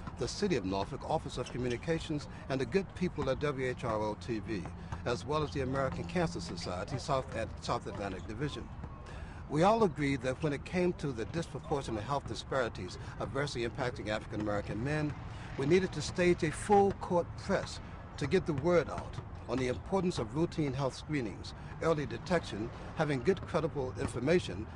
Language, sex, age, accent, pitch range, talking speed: English, male, 60-79, American, 105-155 Hz, 160 wpm